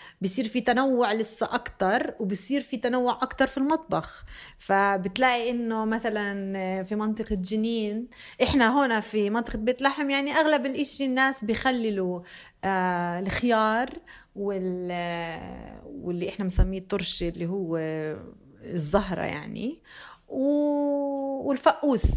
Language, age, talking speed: Arabic, 30-49, 110 wpm